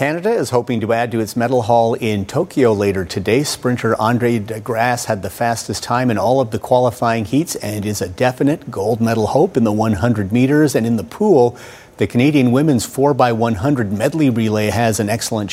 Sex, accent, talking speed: male, American, 195 wpm